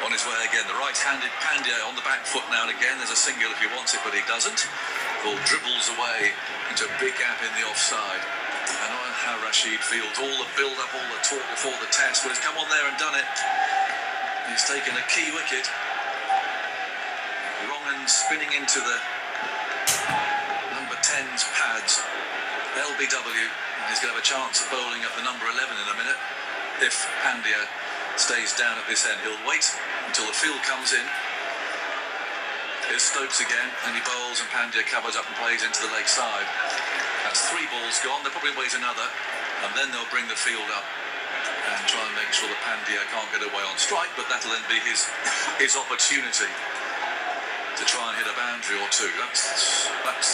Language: English